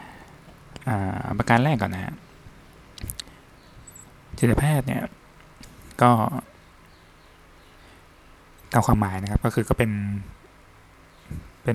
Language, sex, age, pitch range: Thai, male, 20-39, 95-120 Hz